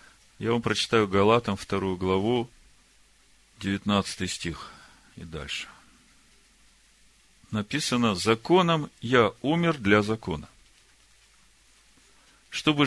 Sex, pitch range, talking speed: male, 100-145 Hz, 80 wpm